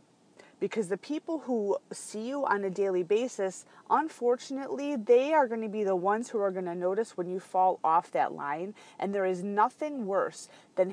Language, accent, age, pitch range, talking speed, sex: English, American, 30-49, 185-235 Hz, 190 wpm, female